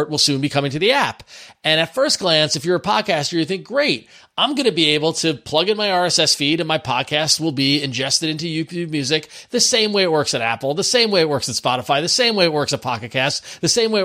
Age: 30-49